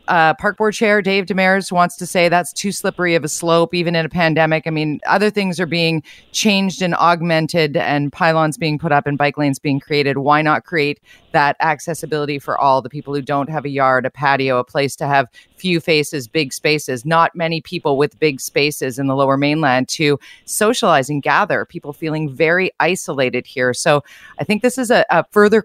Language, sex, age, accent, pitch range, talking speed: English, female, 30-49, American, 145-185 Hz, 210 wpm